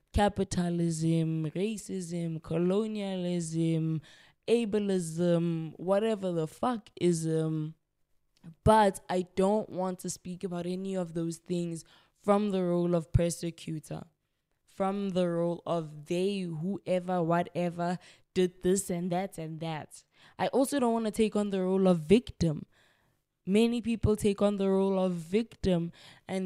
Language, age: English, 20-39